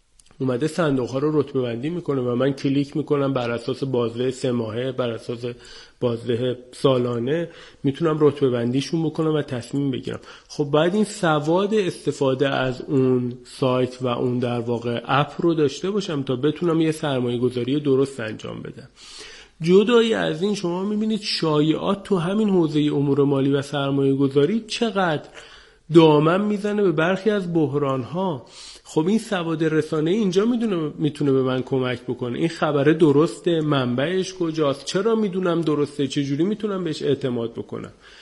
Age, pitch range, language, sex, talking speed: 40-59, 130-170 Hz, Persian, male, 150 wpm